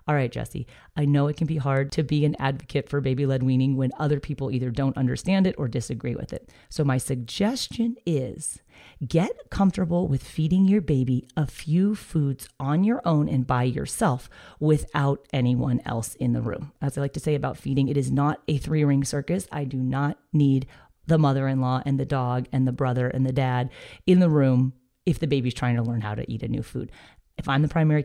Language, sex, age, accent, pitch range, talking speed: English, female, 30-49, American, 130-155 Hz, 215 wpm